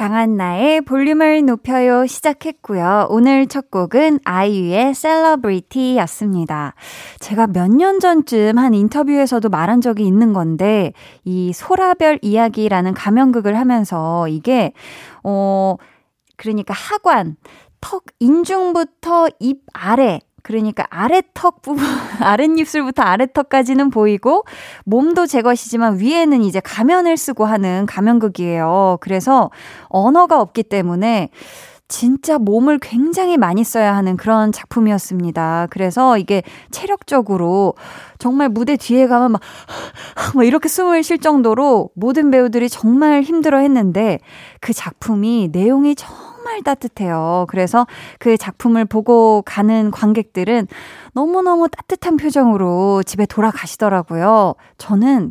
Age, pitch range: 20-39, 195-275 Hz